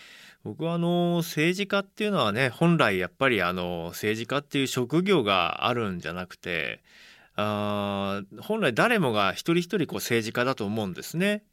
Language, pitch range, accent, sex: Japanese, 105-170 Hz, native, male